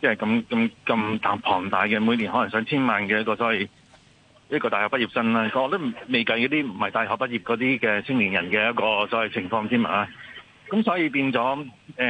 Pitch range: 110-130 Hz